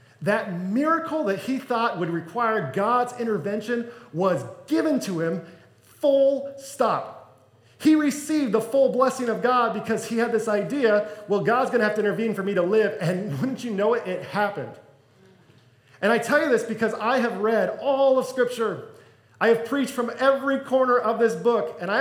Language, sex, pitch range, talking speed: English, male, 155-240 Hz, 185 wpm